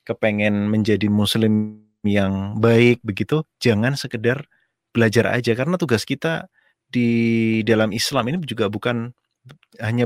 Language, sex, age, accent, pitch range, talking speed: Indonesian, male, 30-49, native, 110-130 Hz, 120 wpm